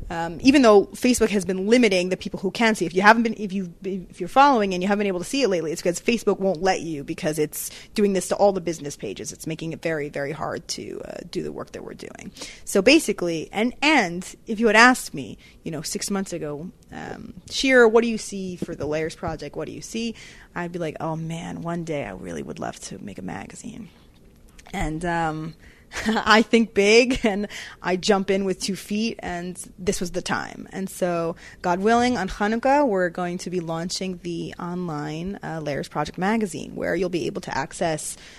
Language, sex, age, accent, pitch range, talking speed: English, female, 30-49, American, 170-210 Hz, 220 wpm